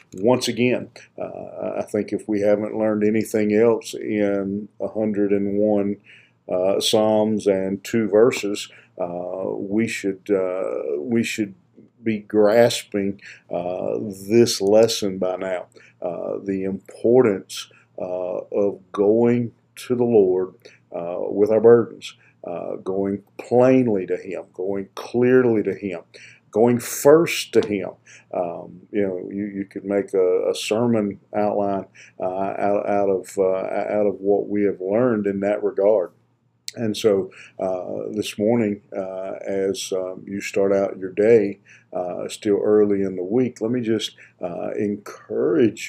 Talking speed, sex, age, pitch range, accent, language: 140 wpm, male, 50-69, 100-115 Hz, American, English